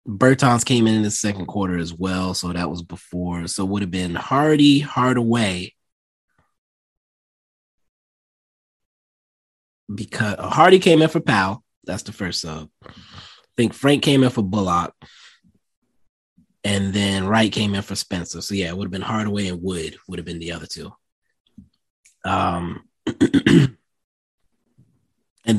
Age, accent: 20-39, American